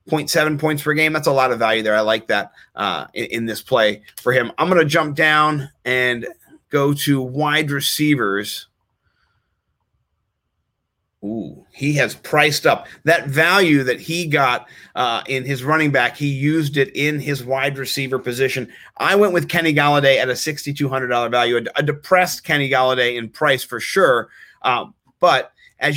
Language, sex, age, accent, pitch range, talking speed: English, male, 30-49, American, 125-150 Hz, 175 wpm